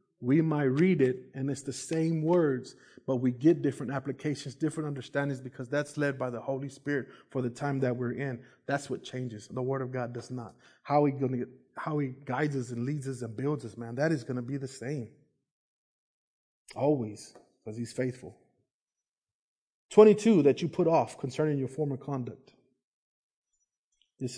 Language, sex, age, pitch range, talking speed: English, male, 20-39, 125-150 Hz, 175 wpm